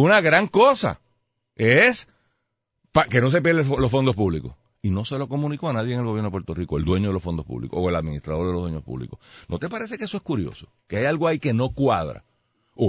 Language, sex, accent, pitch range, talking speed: Spanish, male, American, 100-150 Hz, 250 wpm